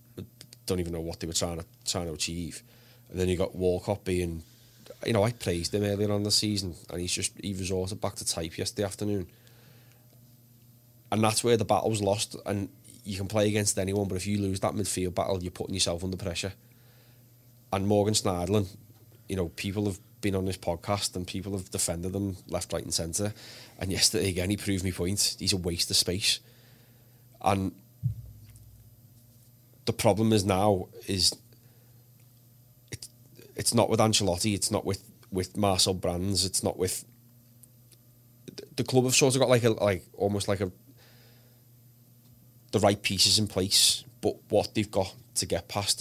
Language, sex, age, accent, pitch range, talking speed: English, male, 20-39, British, 95-120 Hz, 180 wpm